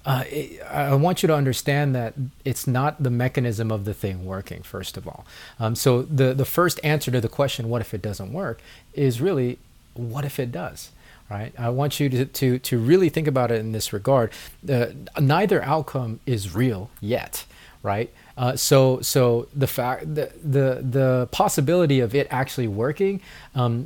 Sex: male